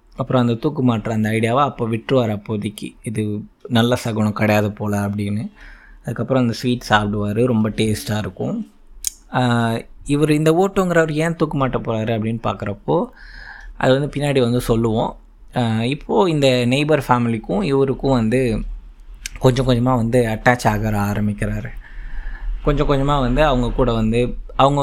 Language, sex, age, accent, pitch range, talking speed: Tamil, male, 20-39, native, 110-130 Hz, 135 wpm